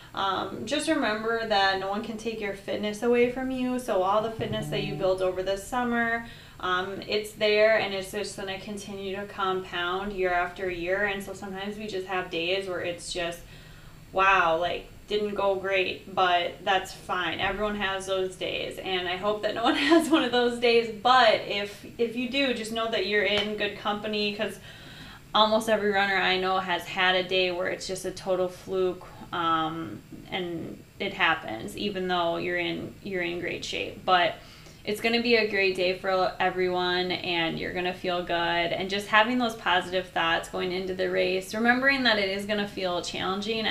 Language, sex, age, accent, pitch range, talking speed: English, female, 20-39, American, 180-210 Hz, 195 wpm